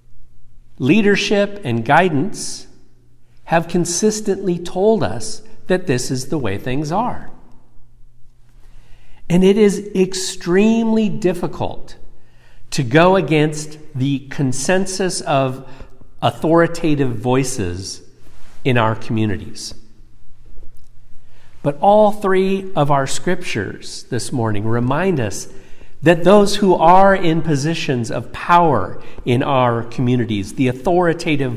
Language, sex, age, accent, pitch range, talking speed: English, male, 50-69, American, 120-175 Hz, 100 wpm